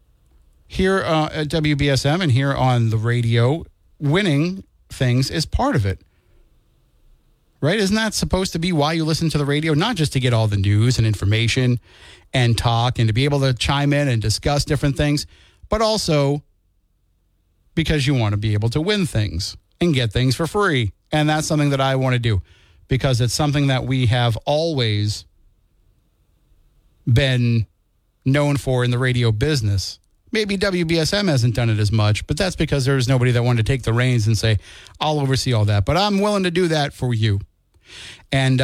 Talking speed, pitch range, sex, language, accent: 185 wpm, 110-150 Hz, male, English, American